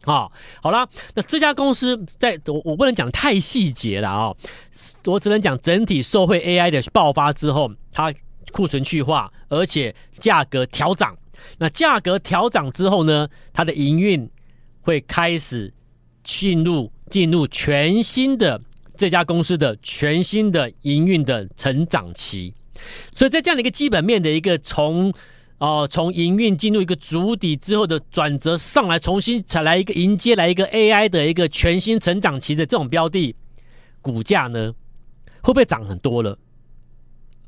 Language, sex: Chinese, male